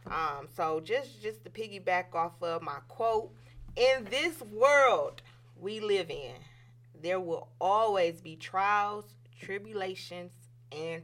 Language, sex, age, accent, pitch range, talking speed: English, female, 30-49, American, 120-195 Hz, 125 wpm